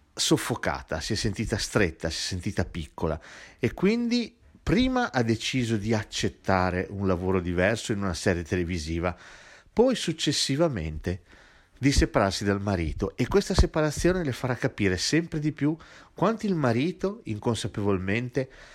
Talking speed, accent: 135 wpm, native